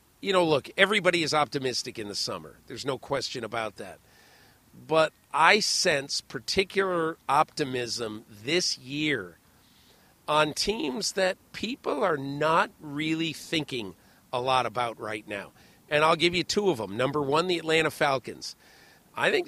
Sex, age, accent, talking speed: male, 50-69, American, 150 wpm